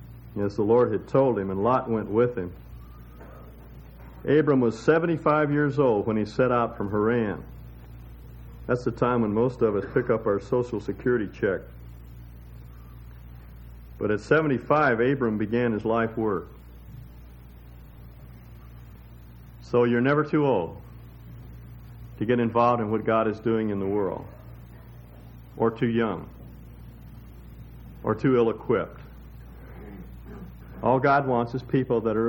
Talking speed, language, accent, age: 135 wpm, English, American, 50-69